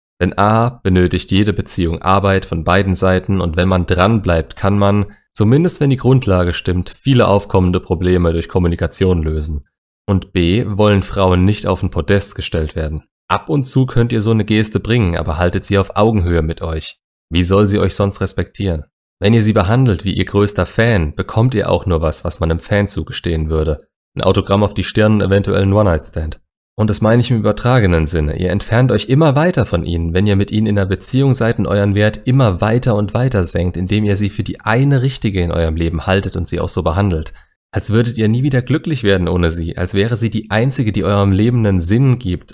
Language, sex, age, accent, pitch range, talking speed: German, male, 30-49, German, 90-110 Hz, 215 wpm